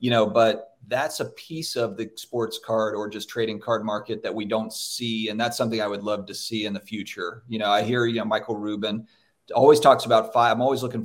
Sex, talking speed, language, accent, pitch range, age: male, 245 wpm, English, American, 110-130 Hz, 40-59